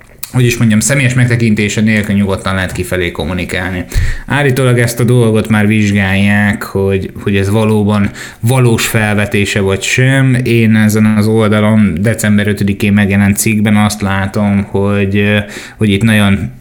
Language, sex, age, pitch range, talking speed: Hungarian, male, 20-39, 100-115 Hz, 135 wpm